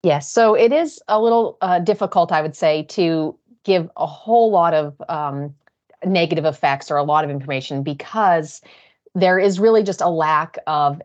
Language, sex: English, female